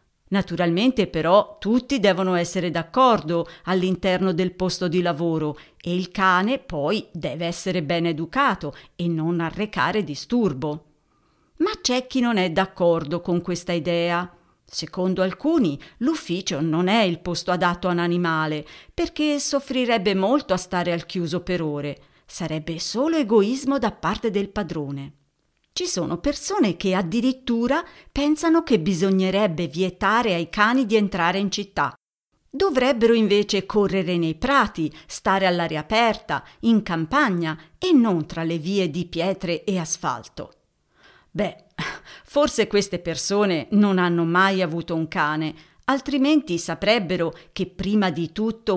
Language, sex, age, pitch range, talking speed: Italian, female, 40-59, 170-225 Hz, 135 wpm